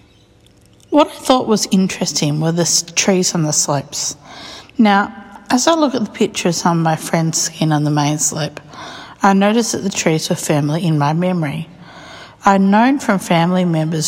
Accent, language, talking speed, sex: Australian, English, 185 wpm, female